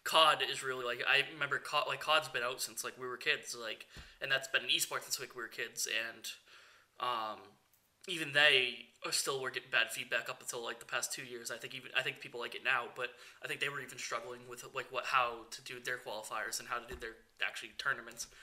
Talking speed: 245 wpm